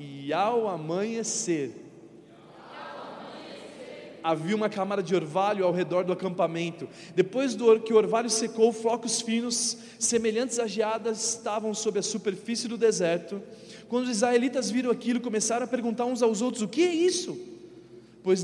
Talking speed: 145 wpm